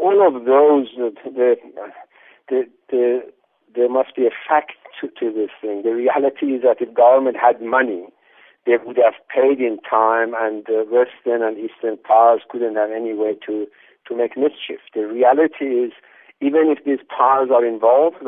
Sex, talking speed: male, 170 wpm